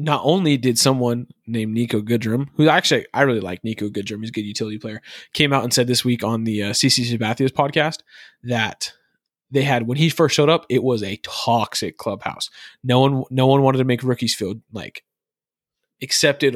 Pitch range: 120-145 Hz